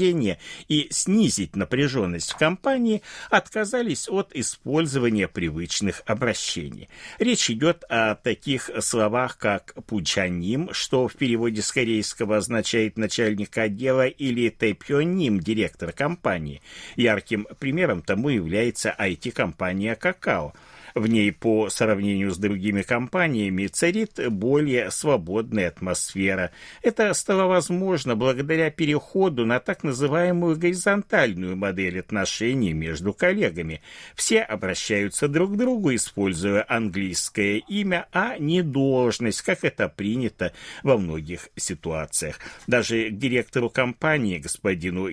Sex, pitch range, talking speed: male, 100-150 Hz, 110 wpm